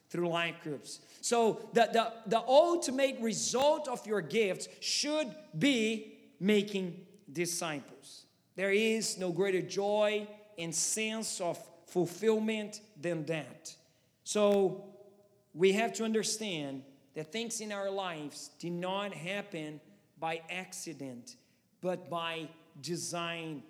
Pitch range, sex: 180-235 Hz, male